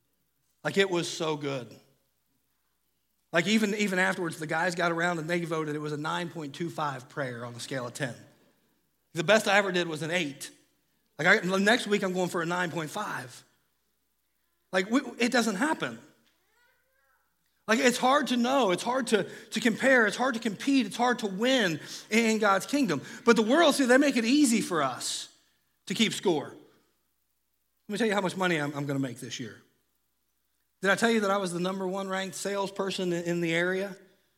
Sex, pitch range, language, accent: male, 155-210 Hz, English, American